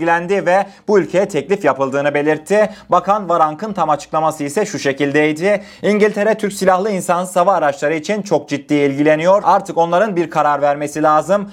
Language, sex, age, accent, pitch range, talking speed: Turkish, male, 30-49, native, 150-195 Hz, 155 wpm